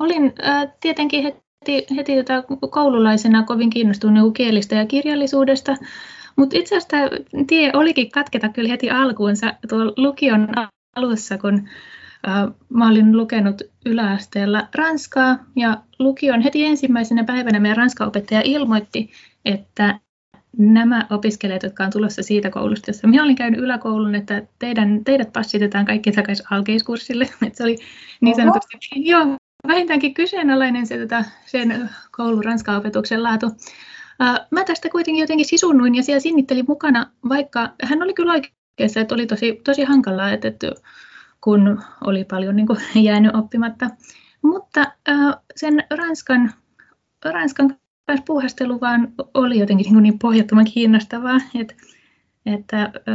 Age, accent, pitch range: 20-39, native, 215-280 Hz